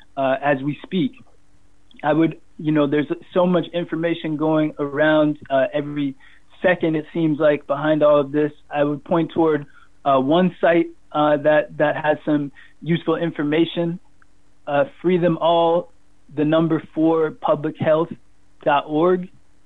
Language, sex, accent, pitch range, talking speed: English, male, American, 140-160 Hz, 135 wpm